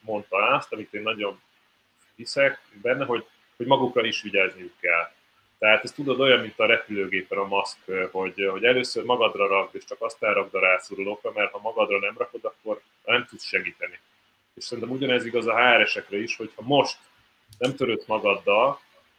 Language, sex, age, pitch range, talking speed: Hungarian, male, 30-49, 110-145 Hz, 165 wpm